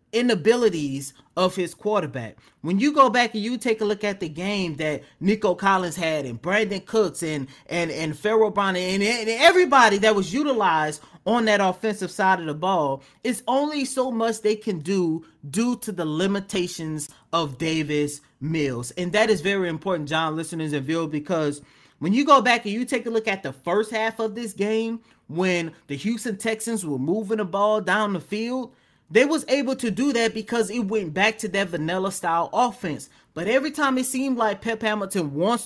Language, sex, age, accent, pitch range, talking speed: English, male, 30-49, American, 165-225 Hz, 195 wpm